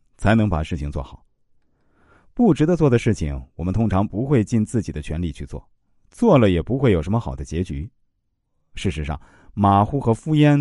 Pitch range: 85-130 Hz